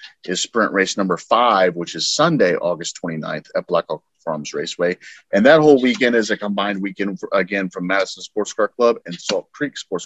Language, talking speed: English, 205 wpm